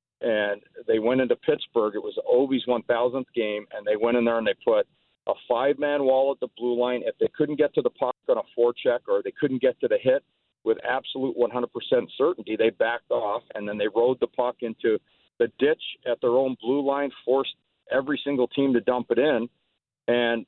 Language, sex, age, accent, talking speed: English, male, 50-69, American, 210 wpm